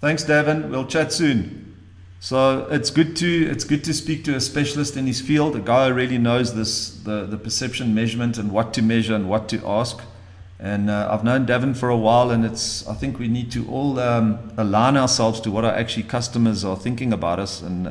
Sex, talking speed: male, 220 wpm